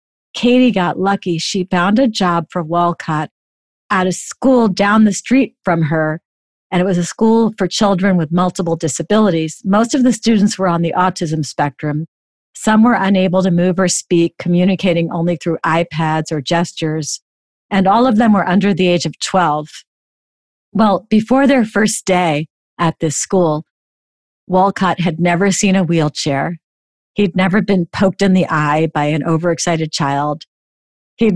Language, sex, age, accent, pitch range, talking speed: English, female, 40-59, American, 160-200 Hz, 165 wpm